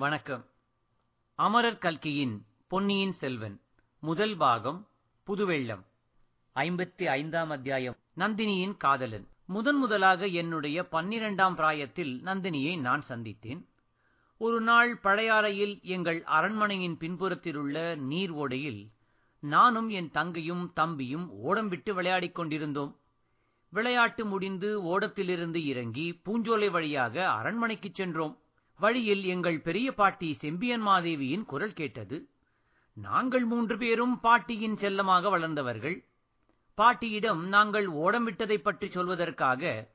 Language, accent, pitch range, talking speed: Tamil, native, 150-210 Hz, 95 wpm